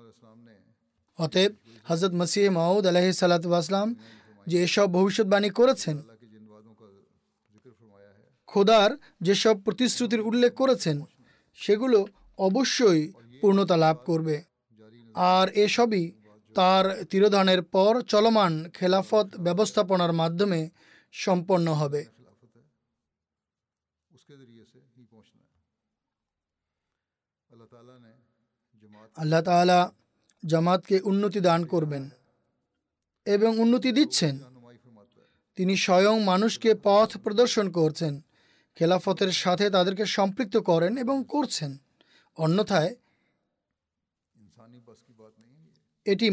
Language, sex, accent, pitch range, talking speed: Bengali, male, native, 125-205 Hz, 40 wpm